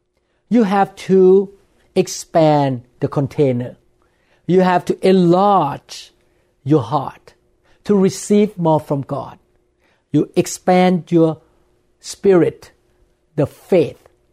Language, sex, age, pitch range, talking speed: English, male, 50-69, 150-195 Hz, 95 wpm